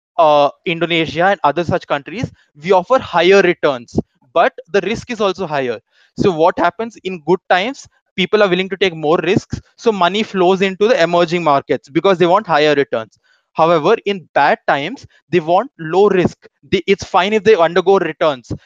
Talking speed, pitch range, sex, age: 175 wpm, 160-200 Hz, male, 20-39